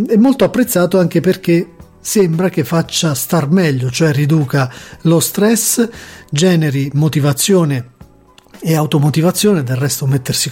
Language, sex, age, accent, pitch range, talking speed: Italian, male, 40-59, native, 150-185 Hz, 120 wpm